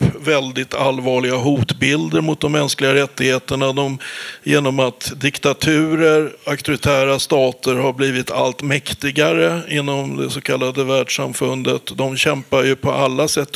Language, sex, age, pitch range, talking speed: Swedish, male, 60-79, 130-155 Hz, 125 wpm